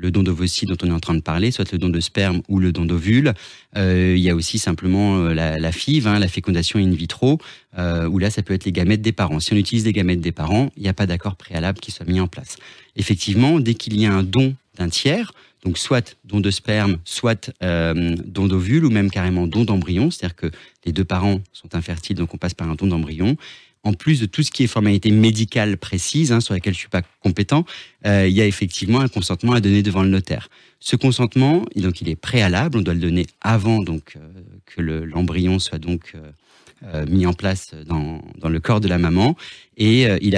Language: French